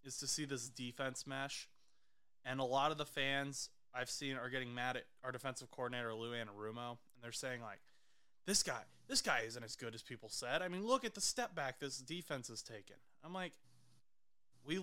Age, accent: 20-39, American